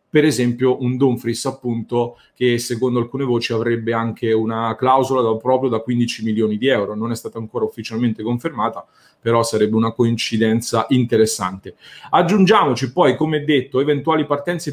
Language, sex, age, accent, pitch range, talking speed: English, male, 40-59, Italian, 115-145 Hz, 155 wpm